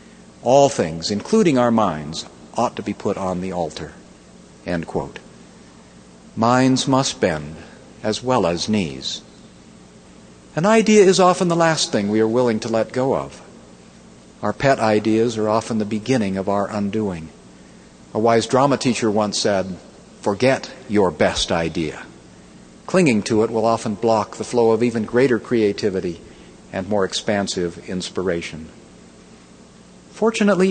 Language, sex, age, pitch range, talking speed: English, male, 50-69, 95-130 Hz, 135 wpm